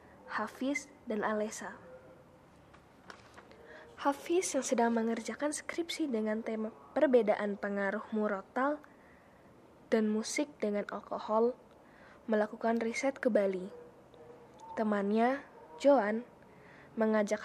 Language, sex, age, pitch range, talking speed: Indonesian, female, 20-39, 210-255 Hz, 85 wpm